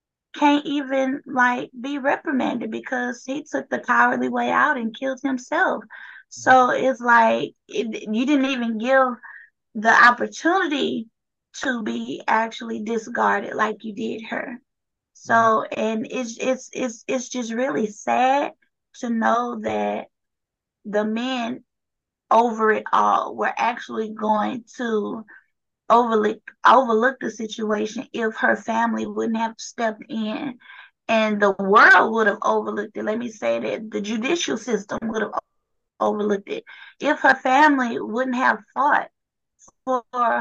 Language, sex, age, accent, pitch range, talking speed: English, female, 20-39, American, 220-265 Hz, 130 wpm